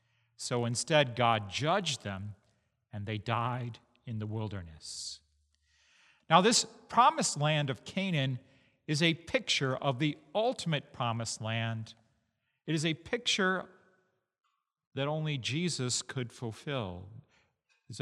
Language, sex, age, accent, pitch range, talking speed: English, male, 40-59, American, 115-165 Hz, 115 wpm